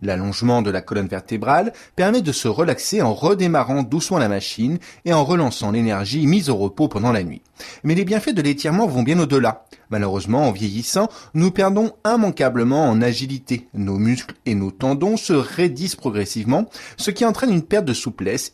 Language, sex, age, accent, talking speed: French, male, 30-49, French, 180 wpm